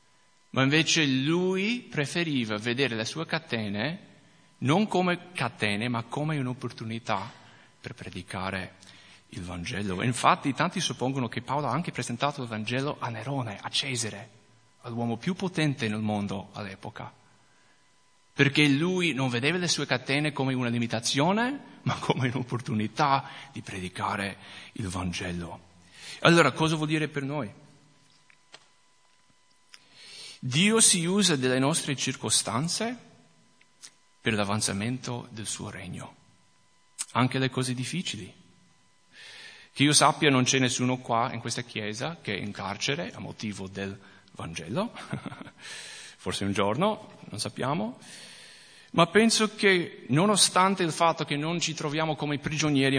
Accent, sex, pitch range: Italian, male, 115-160 Hz